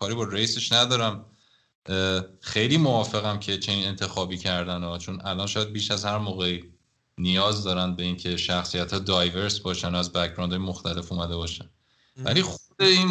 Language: Persian